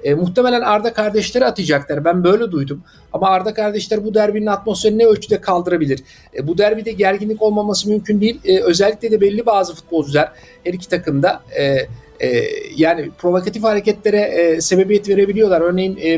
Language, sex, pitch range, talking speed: Turkish, male, 170-210 Hz, 160 wpm